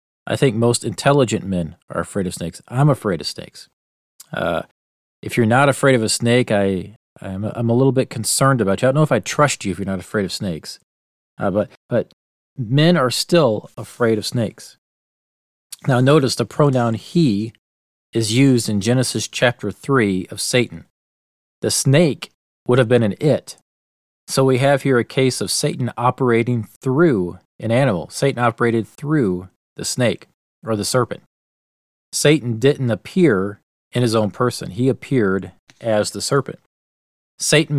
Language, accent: English, American